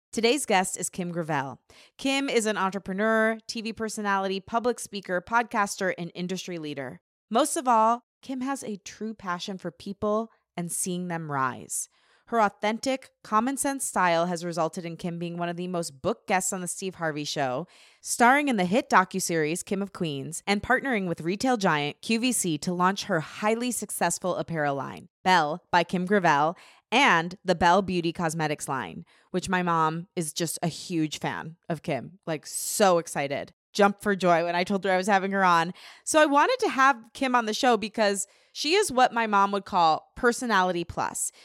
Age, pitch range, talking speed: 20-39, 175-225 Hz, 185 wpm